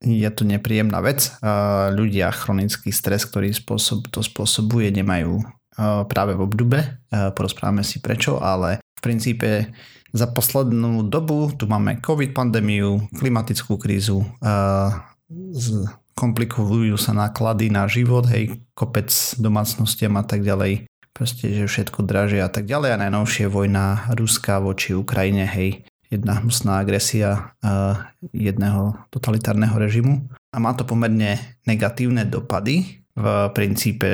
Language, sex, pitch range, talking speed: Slovak, male, 100-120 Hz, 120 wpm